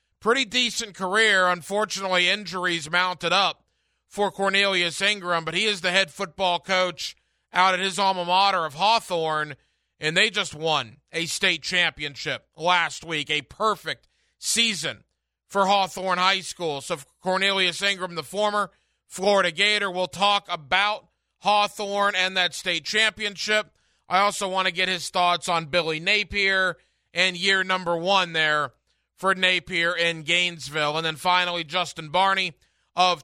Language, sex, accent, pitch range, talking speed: English, male, American, 160-195 Hz, 145 wpm